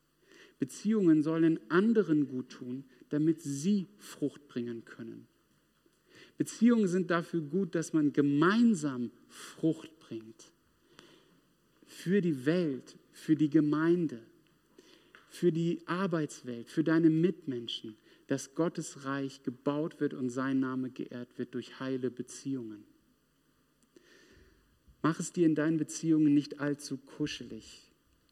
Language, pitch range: German, 125-160 Hz